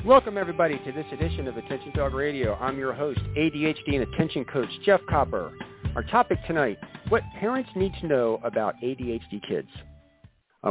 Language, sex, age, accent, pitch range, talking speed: English, male, 50-69, American, 100-135 Hz, 170 wpm